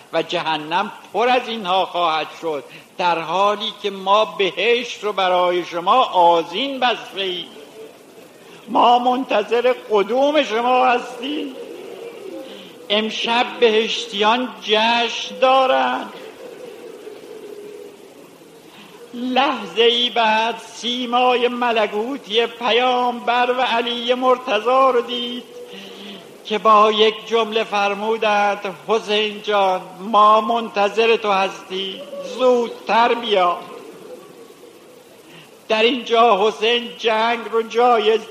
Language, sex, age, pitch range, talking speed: Persian, male, 50-69, 195-245 Hz, 90 wpm